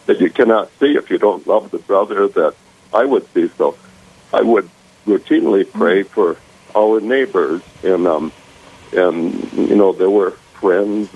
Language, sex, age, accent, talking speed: English, male, 60-79, American, 160 wpm